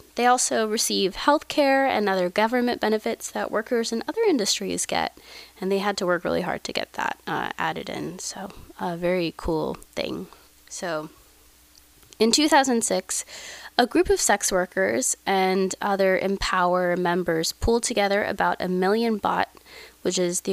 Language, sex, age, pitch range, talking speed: English, female, 20-39, 185-240 Hz, 160 wpm